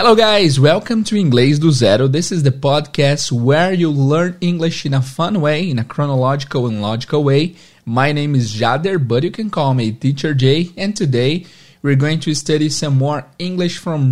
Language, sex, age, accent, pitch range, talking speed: Portuguese, male, 20-39, Brazilian, 135-170 Hz, 195 wpm